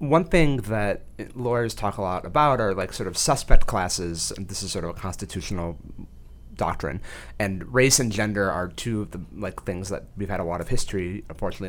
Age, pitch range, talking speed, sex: 30-49, 85-110 Hz, 205 wpm, male